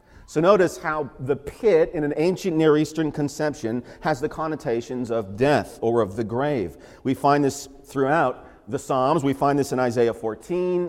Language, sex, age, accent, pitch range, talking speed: English, male, 40-59, American, 105-140 Hz, 175 wpm